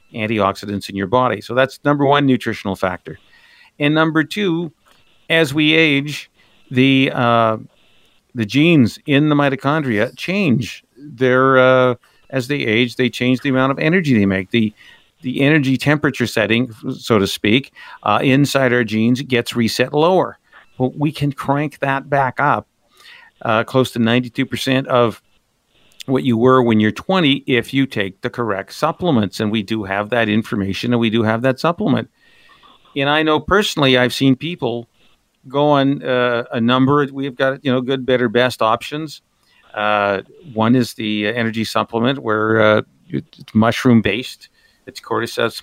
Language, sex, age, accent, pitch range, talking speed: English, male, 50-69, American, 110-140 Hz, 160 wpm